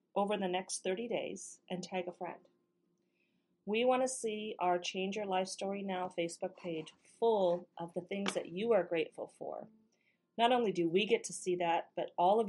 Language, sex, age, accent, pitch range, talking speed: English, female, 40-59, American, 175-210 Hz, 195 wpm